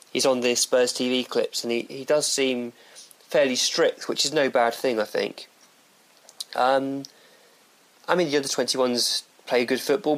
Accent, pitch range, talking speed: British, 115-145 Hz, 170 wpm